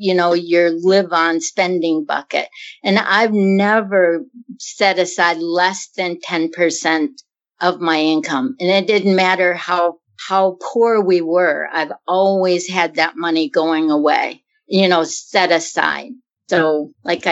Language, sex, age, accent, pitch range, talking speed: English, female, 50-69, American, 165-205 Hz, 140 wpm